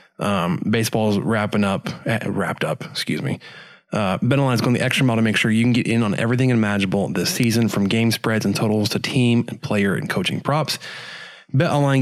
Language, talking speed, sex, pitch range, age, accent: English, 210 wpm, male, 105-125 Hz, 20-39, American